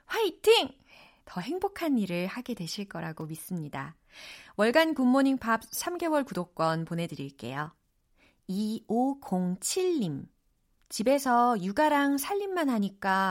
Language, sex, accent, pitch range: Korean, female, native, 170-255 Hz